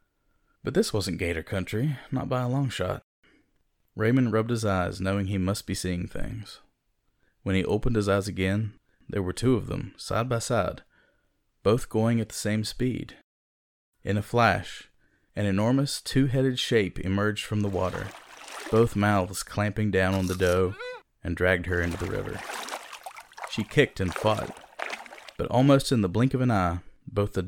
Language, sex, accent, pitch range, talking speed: English, male, American, 90-115 Hz, 170 wpm